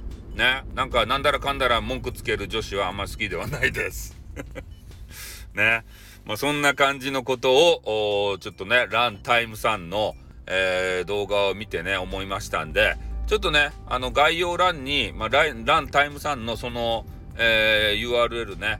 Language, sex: Japanese, male